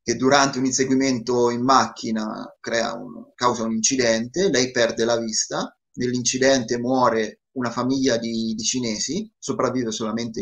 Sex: male